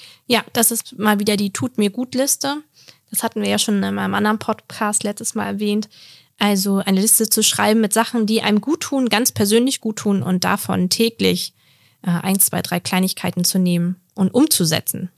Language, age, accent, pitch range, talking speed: German, 20-39, German, 185-220 Hz, 180 wpm